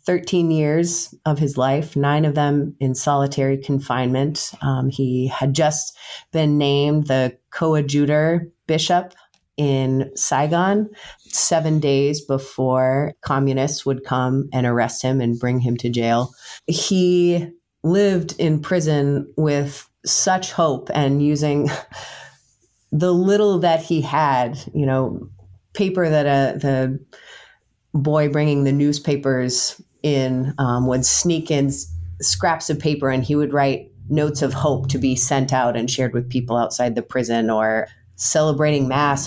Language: English